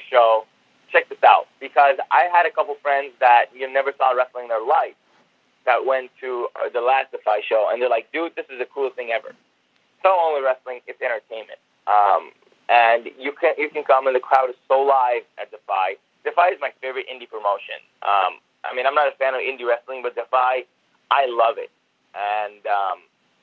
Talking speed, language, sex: 200 wpm, English, male